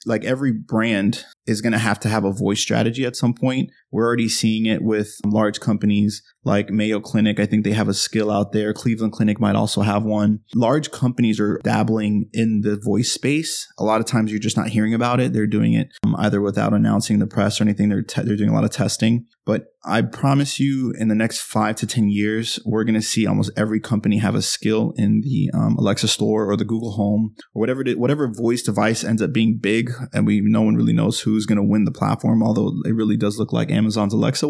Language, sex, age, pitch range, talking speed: English, male, 20-39, 105-115 Hz, 235 wpm